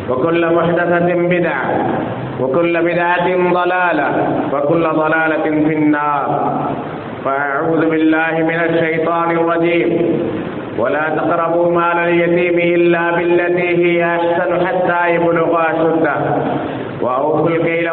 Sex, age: male, 50-69